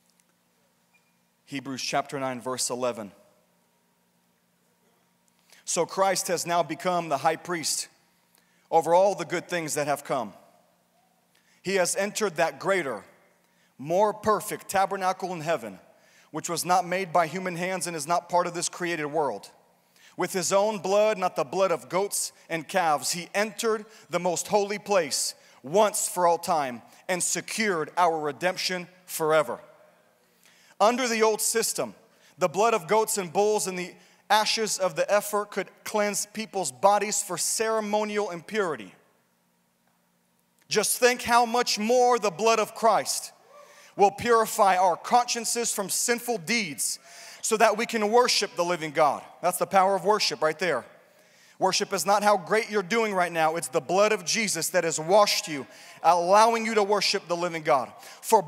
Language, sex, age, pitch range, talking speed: English, male, 40-59, 170-215 Hz, 155 wpm